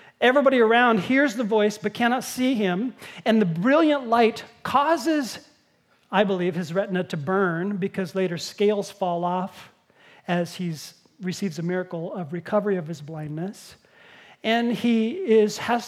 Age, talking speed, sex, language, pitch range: 40-59, 145 wpm, male, English, 180-265 Hz